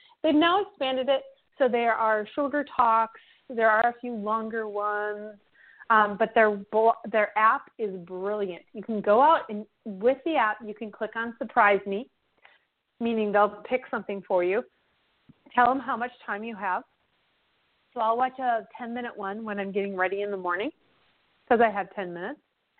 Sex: female